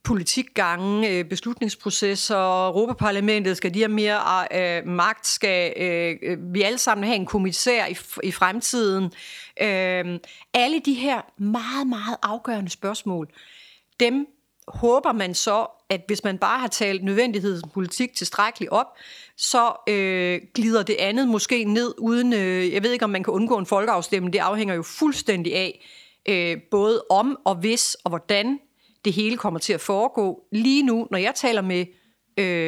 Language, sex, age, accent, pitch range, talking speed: Danish, female, 40-59, native, 185-235 Hz, 155 wpm